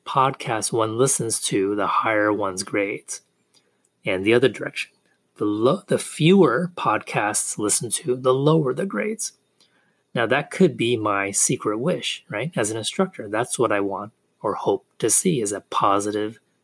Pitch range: 105-160 Hz